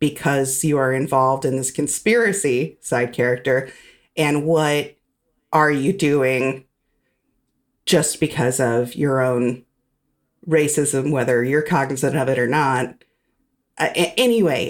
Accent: American